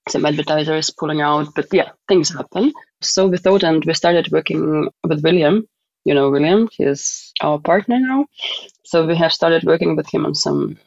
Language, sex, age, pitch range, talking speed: English, female, 30-49, 150-185 Hz, 180 wpm